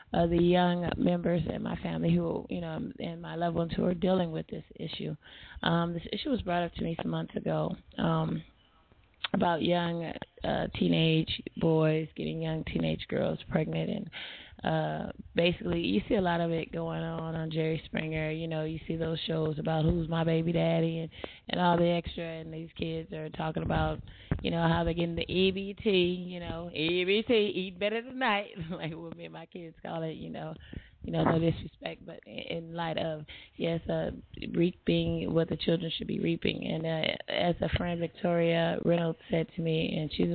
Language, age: English, 20-39